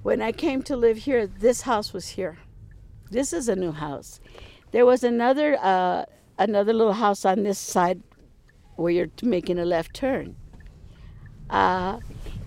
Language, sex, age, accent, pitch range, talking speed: English, female, 60-79, American, 185-280 Hz, 155 wpm